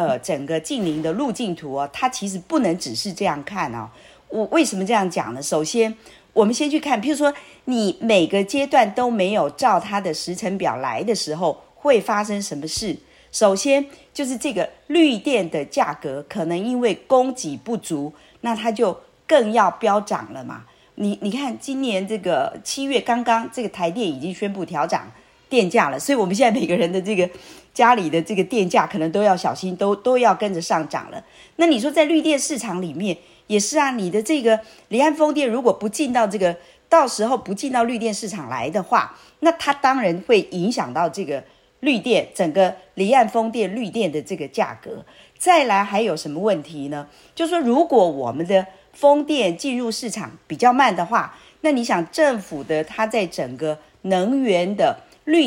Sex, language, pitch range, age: female, Chinese, 180-260 Hz, 40-59